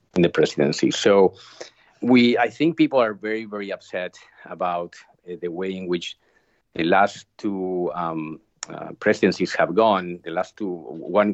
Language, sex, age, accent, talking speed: English, male, 50-69, Spanish, 160 wpm